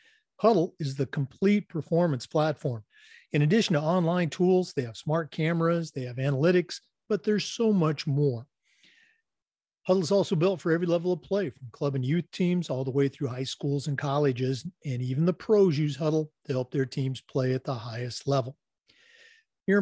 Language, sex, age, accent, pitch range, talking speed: English, male, 50-69, American, 135-175 Hz, 185 wpm